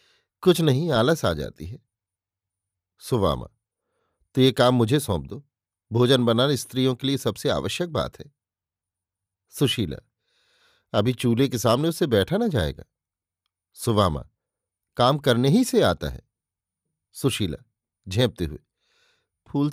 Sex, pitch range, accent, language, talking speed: male, 100-130 Hz, native, Hindi, 130 wpm